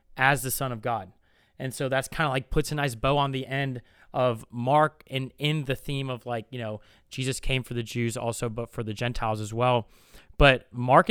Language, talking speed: English, 225 wpm